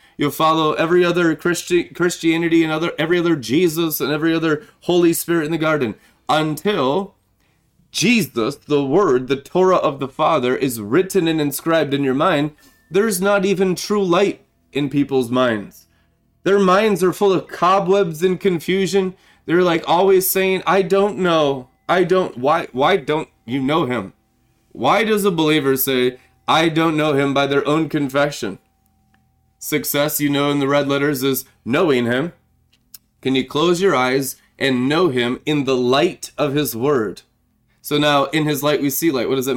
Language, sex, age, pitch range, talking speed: English, male, 20-39, 140-185 Hz, 175 wpm